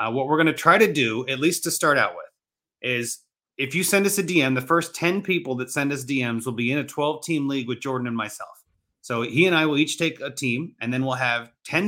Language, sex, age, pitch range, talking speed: English, male, 30-49, 125-155 Hz, 270 wpm